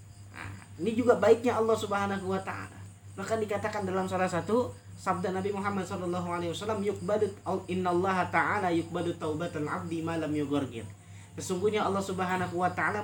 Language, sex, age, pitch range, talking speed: Malay, male, 20-39, 140-215 Hz, 140 wpm